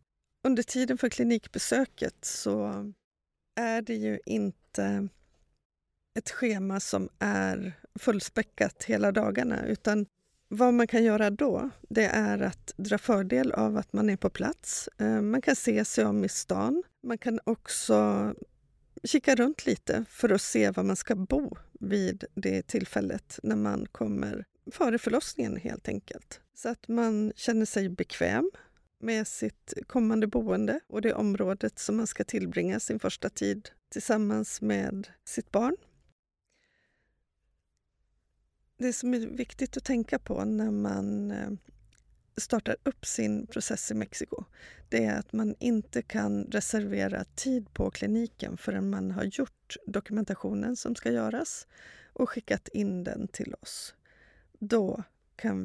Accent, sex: native, female